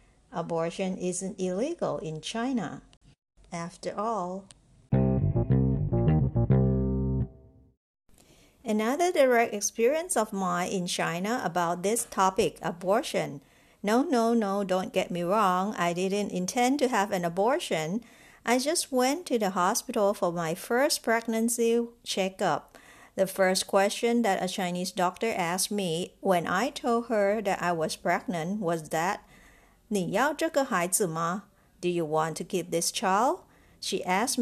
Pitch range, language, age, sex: 180-235 Hz, Chinese, 50-69, female